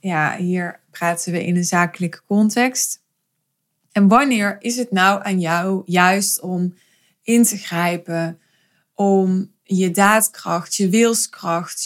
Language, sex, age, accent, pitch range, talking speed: Dutch, female, 20-39, Dutch, 180-205 Hz, 125 wpm